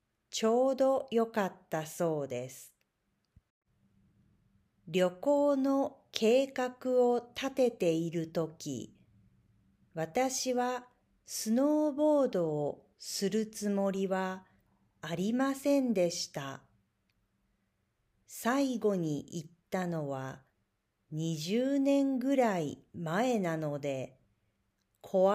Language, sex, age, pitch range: Japanese, female, 40-59, 145-235 Hz